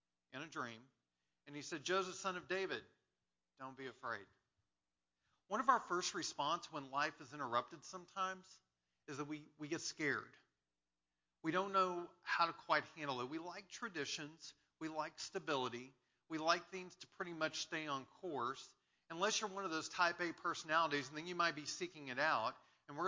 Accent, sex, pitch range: American, male, 135-175 Hz